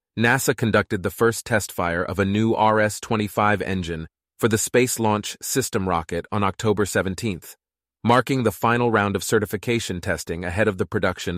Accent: American